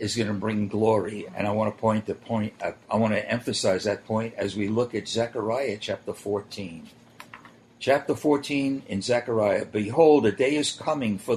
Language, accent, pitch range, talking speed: English, American, 105-140 Hz, 185 wpm